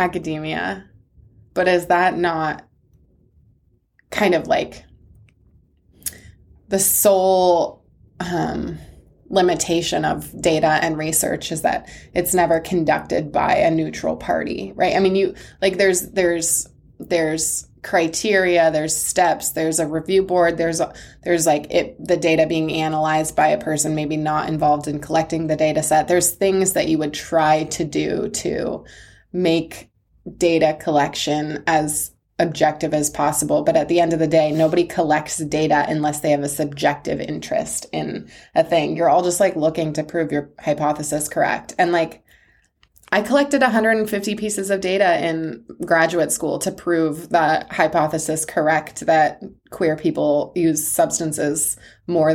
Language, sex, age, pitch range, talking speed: English, female, 20-39, 150-175 Hz, 145 wpm